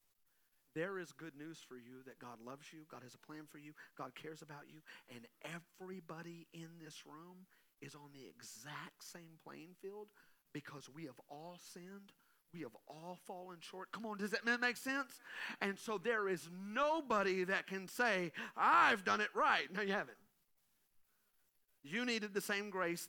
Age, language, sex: 40-59, English, male